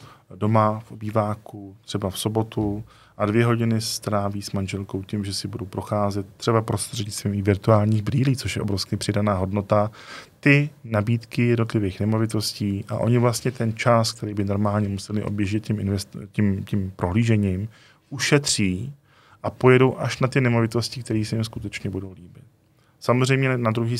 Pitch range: 105-120 Hz